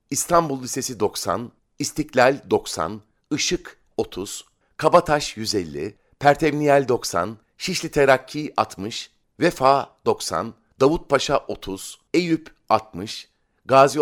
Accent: native